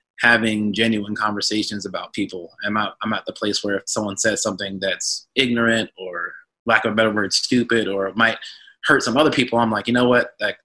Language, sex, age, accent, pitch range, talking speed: English, male, 20-39, American, 100-115 Hz, 210 wpm